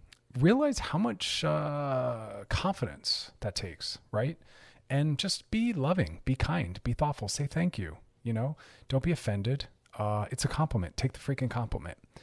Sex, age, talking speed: male, 40-59, 155 wpm